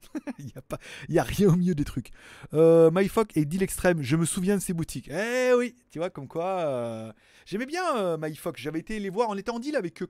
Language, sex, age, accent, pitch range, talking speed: French, male, 30-49, French, 125-185 Hz, 250 wpm